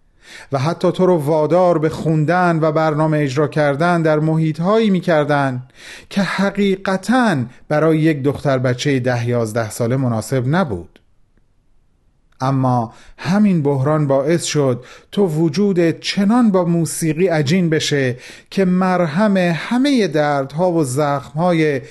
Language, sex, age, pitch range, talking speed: Persian, male, 40-59, 135-180 Hz, 120 wpm